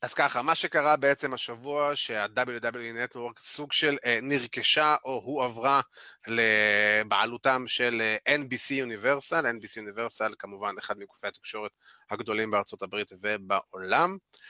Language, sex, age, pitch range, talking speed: Hebrew, male, 30-49, 110-145 Hz, 115 wpm